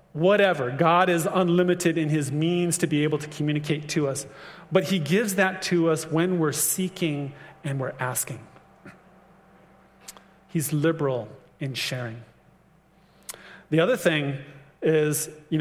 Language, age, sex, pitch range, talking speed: English, 30-49, male, 145-180 Hz, 135 wpm